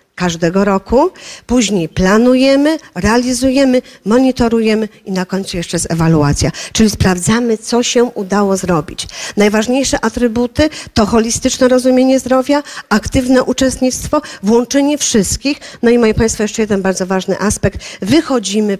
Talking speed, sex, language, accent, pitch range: 120 wpm, female, Polish, native, 200-245 Hz